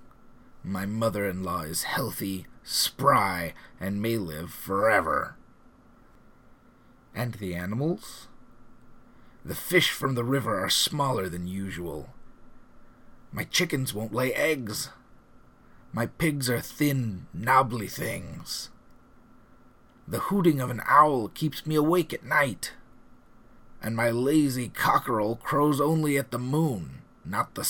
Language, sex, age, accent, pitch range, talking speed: English, male, 30-49, American, 115-155 Hz, 115 wpm